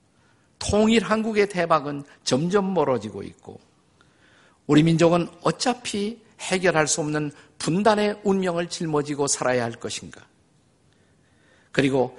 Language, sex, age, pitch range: Korean, male, 50-69, 135-190 Hz